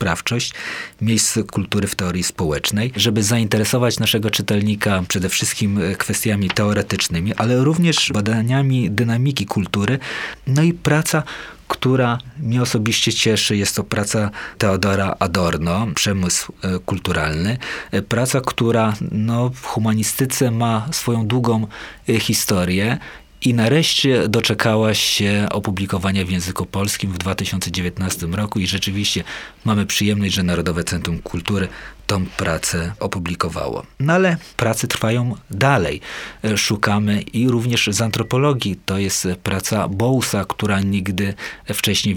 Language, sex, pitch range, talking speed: Polish, male, 95-115 Hz, 115 wpm